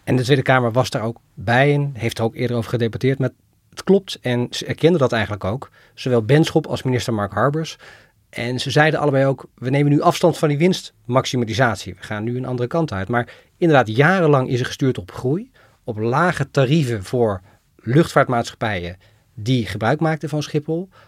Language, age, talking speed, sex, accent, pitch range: Dutch, 40-59, 190 wpm, male, Dutch, 115-150 Hz